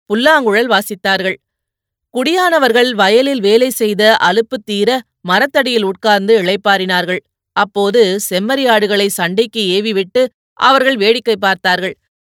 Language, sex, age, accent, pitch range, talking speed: Tamil, female, 30-49, native, 195-240 Hz, 90 wpm